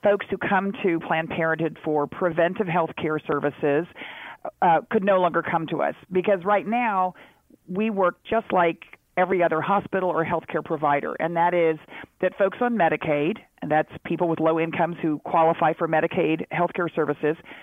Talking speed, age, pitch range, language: 175 wpm, 40-59, 160-185 Hz, English